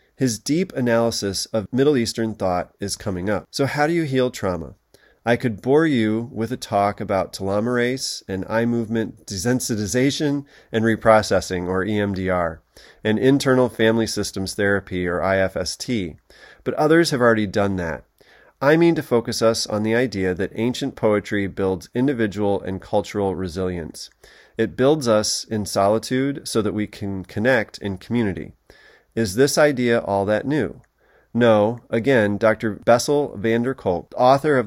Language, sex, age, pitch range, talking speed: English, male, 30-49, 100-120 Hz, 155 wpm